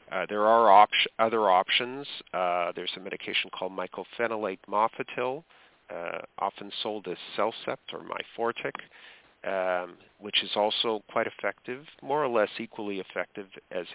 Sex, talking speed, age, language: male, 140 wpm, 40-59, English